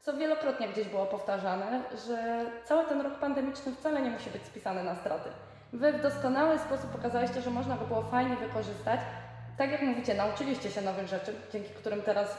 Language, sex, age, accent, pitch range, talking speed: Polish, female, 20-39, native, 195-245 Hz, 185 wpm